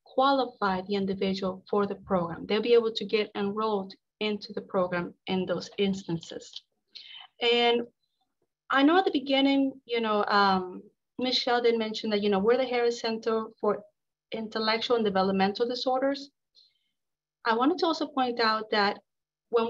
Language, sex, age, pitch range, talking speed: English, female, 30-49, 205-245 Hz, 150 wpm